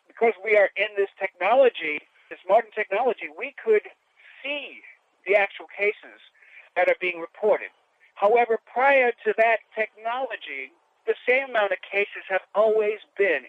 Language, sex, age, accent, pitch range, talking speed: English, male, 60-79, American, 180-250 Hz, 140 wpm